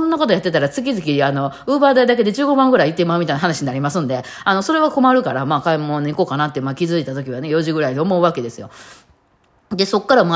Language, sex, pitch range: Japanese, female, 135-195 Hz